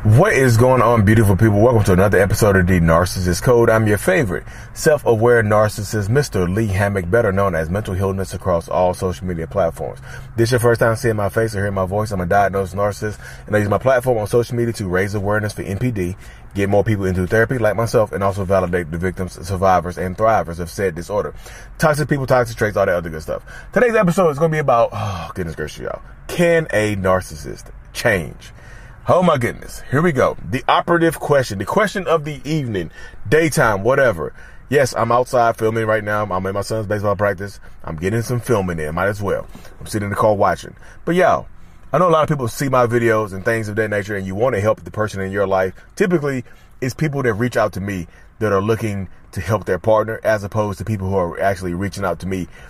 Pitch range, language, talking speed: 95-120 Hz, English, 225 wpm